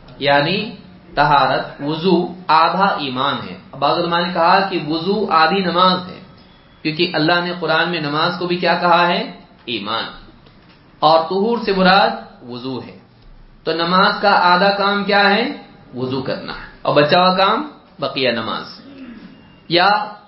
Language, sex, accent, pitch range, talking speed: English, male, Indian, 160-195 Hz, 140 wpm